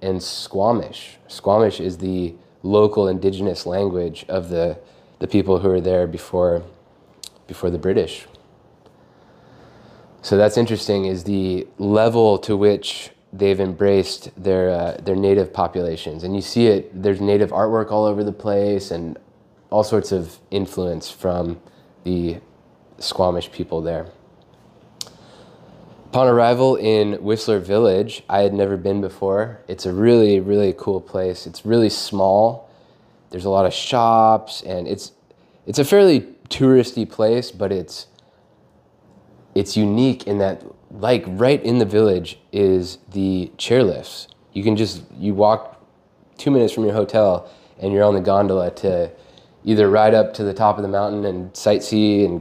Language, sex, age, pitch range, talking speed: English, male, 20-39, 95-105 Hz, 145 wpm